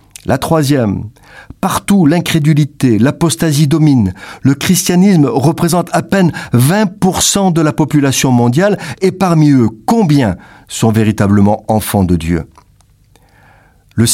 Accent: French